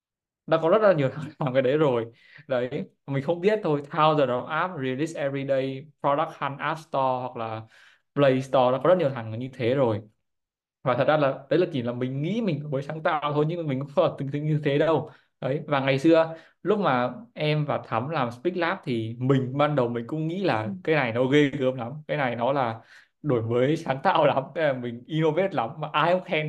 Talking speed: 235 wpm